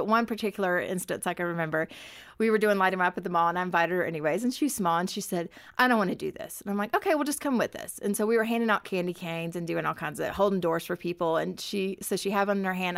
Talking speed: 310 wpm